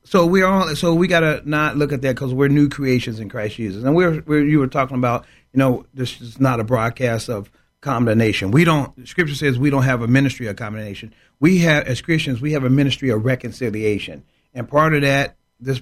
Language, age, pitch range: English, 40-59, 125-165 Hz